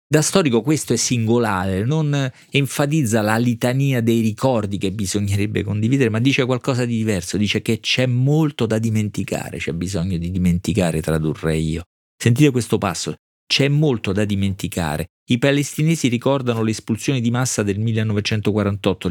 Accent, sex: native, male